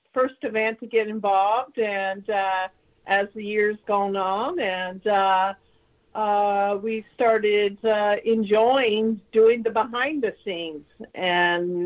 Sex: female